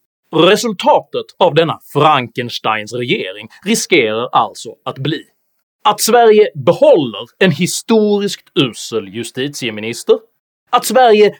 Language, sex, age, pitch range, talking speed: Swedish, male, 30-49, 135-225 Hz, 95 wpm